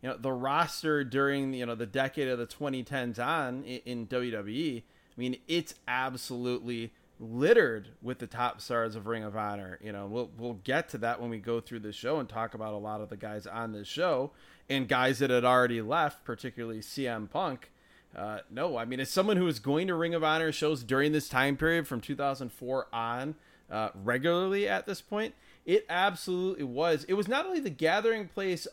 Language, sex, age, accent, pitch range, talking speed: English, male, 30-49, American, 125-170 Hz, 205 wpm